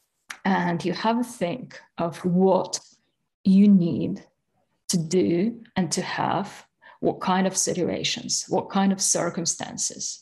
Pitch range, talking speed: 175-195 Hz, 130 wpm